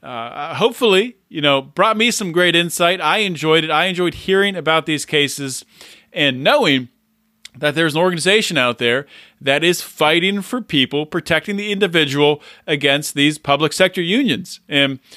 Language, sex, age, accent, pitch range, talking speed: English, male, 40-59, American, 155-200 Hz, 160 wpm